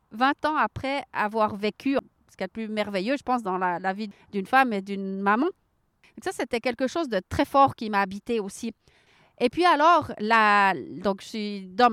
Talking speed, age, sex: 205 wpm, 30-49, female